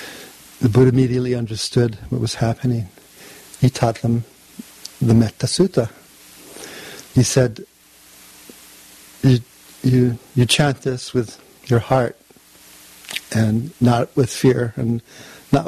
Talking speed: 105 wpm